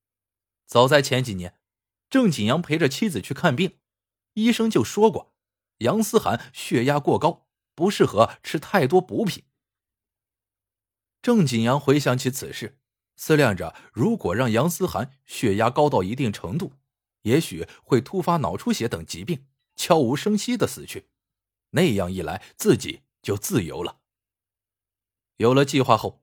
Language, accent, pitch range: Chinese, native, 105-160 Hz